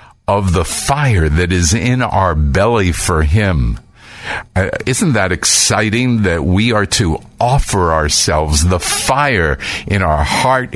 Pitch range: 80-110 Hz